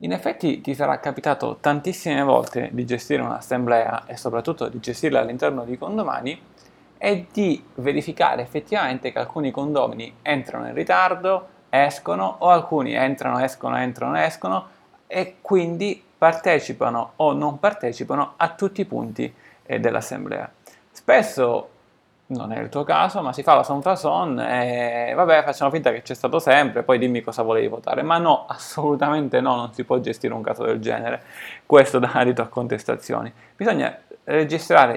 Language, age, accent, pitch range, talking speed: Italian, 20-39, native, 120-155 Hz, 155 wpm